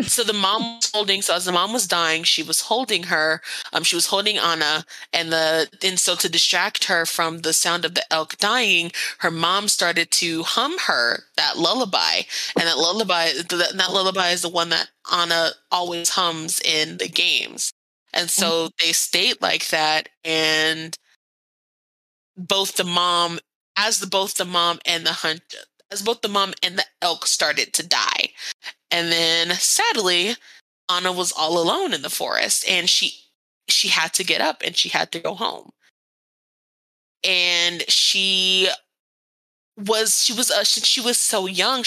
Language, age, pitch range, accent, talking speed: English, 20-39, 165-195 Hz, American, 170 wpm